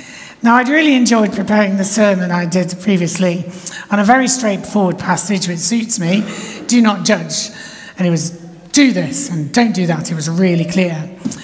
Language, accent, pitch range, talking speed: English, British, 175-250 Hz, 180 wpm